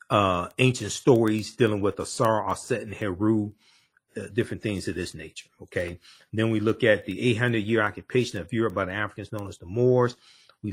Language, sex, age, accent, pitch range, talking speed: English, male, 40-59, American, 100-130 Hz, 200 wpm